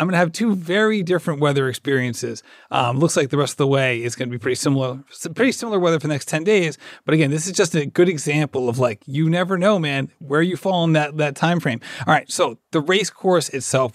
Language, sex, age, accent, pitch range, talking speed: English, male, 30-49, American, 145-215 Hz, 260 wpm